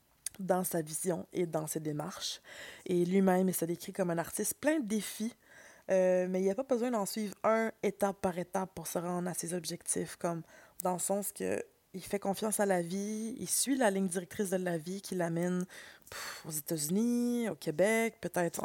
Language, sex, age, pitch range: French, female, 20-39, 170-210 Hz